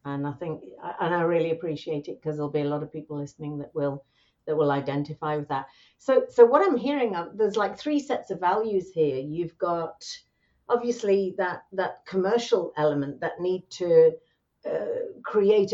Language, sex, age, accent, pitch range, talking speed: English, female, 50-69, British, 160-235 Hz, 180 wpm